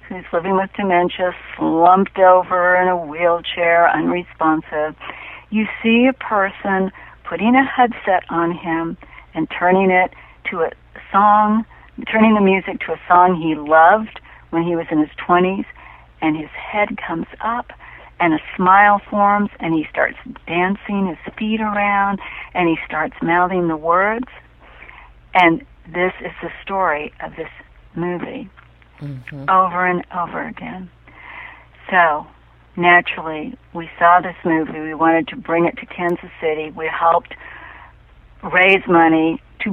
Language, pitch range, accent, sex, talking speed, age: English, 160-195 Hz, American, female, 140 wpm, 60-79